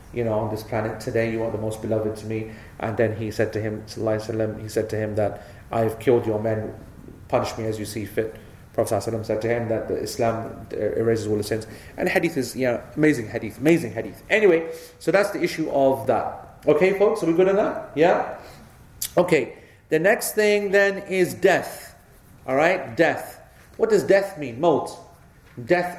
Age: 30-49